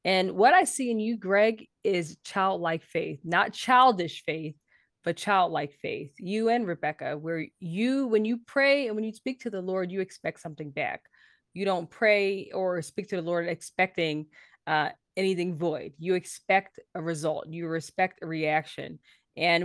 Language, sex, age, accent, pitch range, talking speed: English, female, 20-39, American, 165-210 Hz, 170 wpm